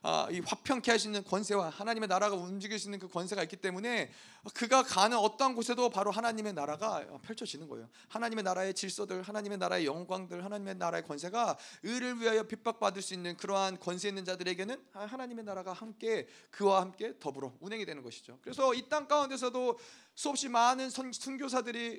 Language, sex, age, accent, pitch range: Korean, male, 30-49, native, 175-235 Hz